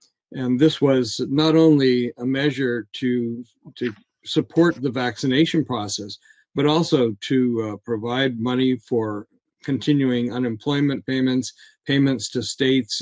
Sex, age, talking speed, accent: male, 50-69, 120 wpm, American